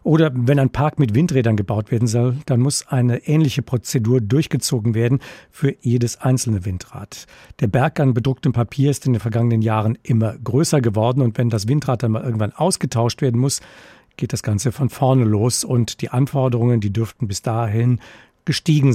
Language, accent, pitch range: German, German, 115-140 Hz